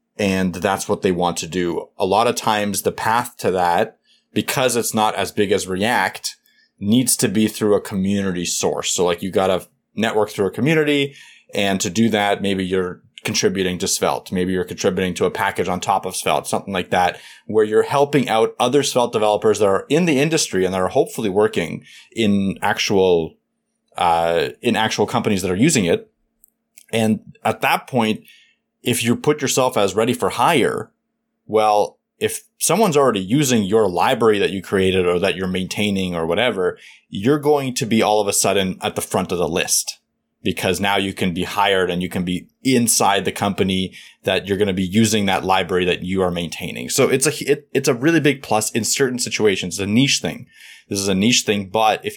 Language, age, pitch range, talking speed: English, 30-49, 95-120 Hz, 200 wpm